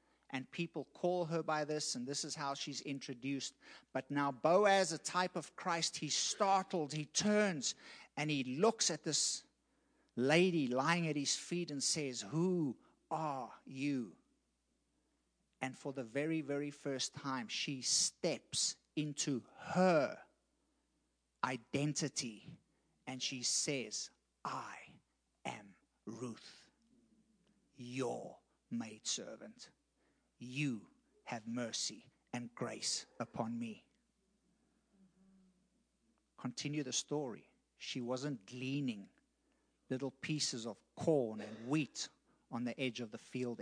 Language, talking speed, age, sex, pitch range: English, 115 wpm, 50-69, male, 125-160 Hz